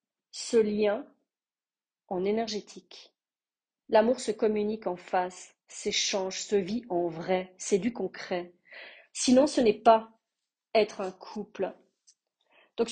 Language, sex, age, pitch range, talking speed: French, female, 40-59, 195-245 Hz, 115 wpm